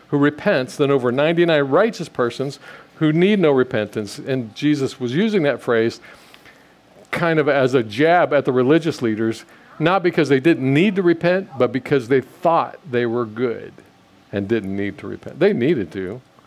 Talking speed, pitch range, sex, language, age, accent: 175 wpm, 125-165 Hz, male, English, 50-69, American